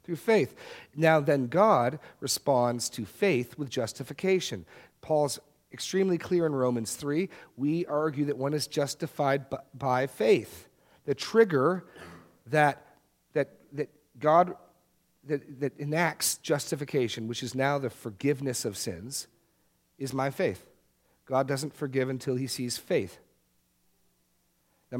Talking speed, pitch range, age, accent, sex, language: 120 wpm, 115-155 Hz, 40-59, American, male, English